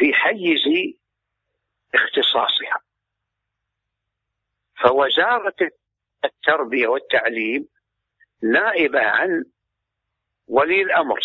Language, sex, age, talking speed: Arabic, male, 60-79, 55 wpm